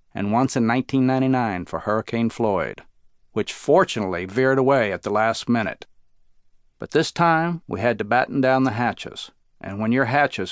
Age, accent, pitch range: 50-69, American, 110-135 Hz